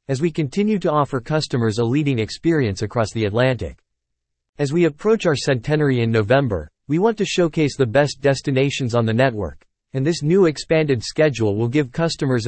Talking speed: 180 wpm